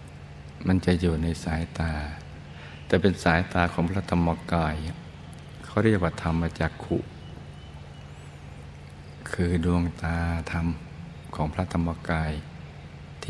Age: 60-79